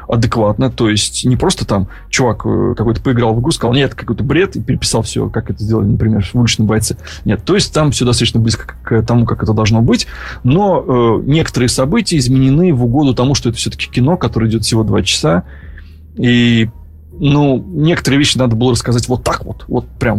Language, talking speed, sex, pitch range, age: Russian, 200 wpm, male, 110-130 Hz, 20-39